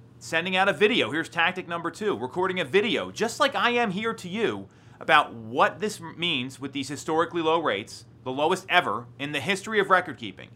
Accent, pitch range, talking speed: American, 130-200 Hz, 205 wpm